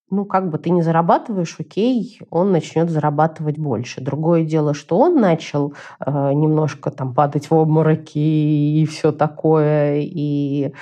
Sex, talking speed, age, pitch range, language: female, 150 wpm, 30-49, 150-200 Hz, Russian